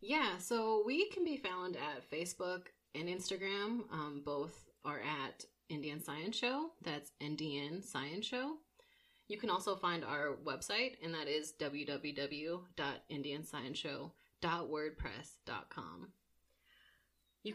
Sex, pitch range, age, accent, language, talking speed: female, 155-210 Hz, 20-39, American, English, 110 wpm